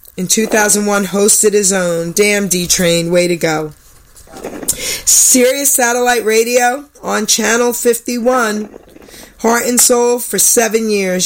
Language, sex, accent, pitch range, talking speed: English, female, American, 185-230 Hz, 115 wpm